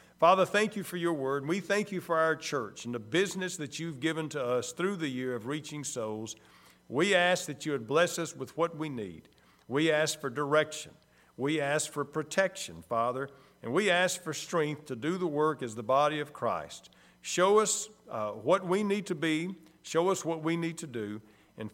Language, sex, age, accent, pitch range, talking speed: English, male, 50-69, American, 140-185 Hz, 210 wpm